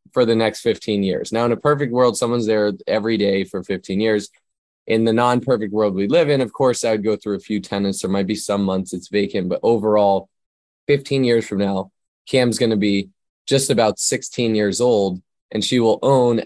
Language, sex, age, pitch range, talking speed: English, male, 20-39, 100-115 Hz, 215 wpm